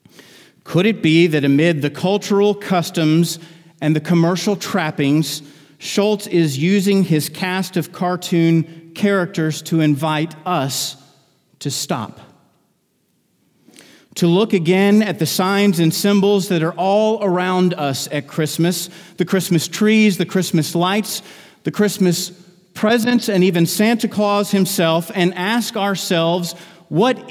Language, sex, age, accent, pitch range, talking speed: English, male, 40-59, American, 145-195 Hz, 125 wpm